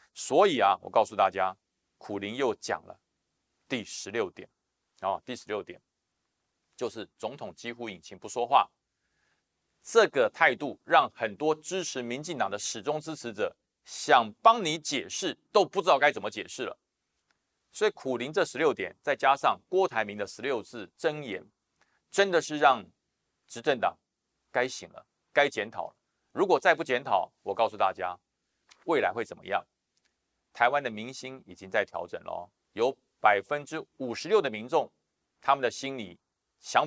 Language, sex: Chinese, male